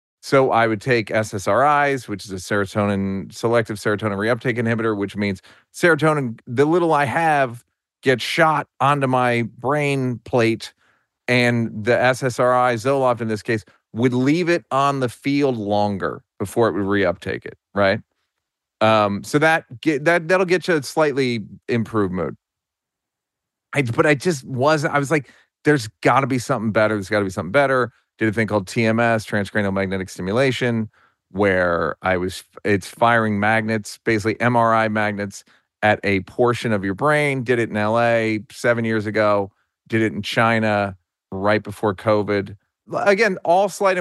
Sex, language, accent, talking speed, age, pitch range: male, English, American, 155 wpm, 40-59, 105-135 Hz